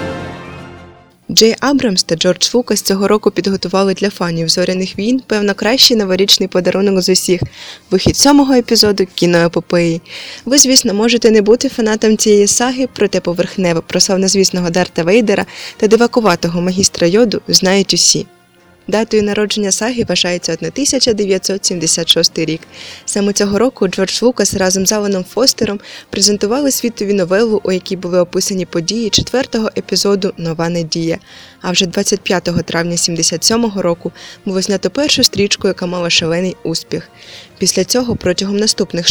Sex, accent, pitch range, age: female, native, 175-220 Hz, 20-39